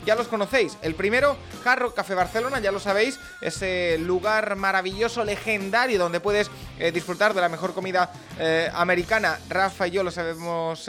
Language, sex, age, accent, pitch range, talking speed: Spanish, male, 20-39, Spanish, 165-215 Hz, 170 wpm